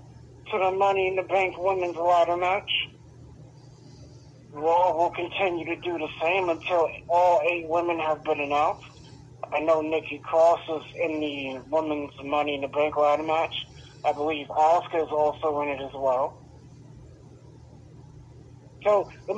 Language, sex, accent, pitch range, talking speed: English, male, American, 140-175 Hz, 150 wpm